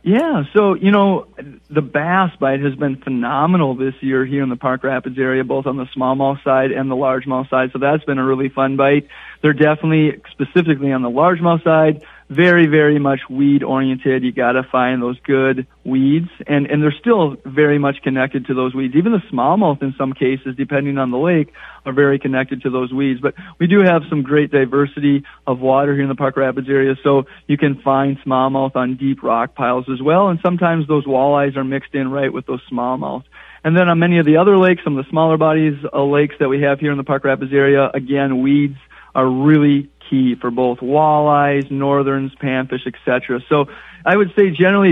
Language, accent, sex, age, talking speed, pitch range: English, American, male, 40-59, 210 wpm, 135-155 Hz